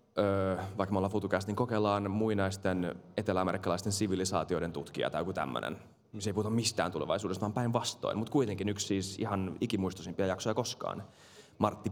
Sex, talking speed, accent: male, 150 wpm, native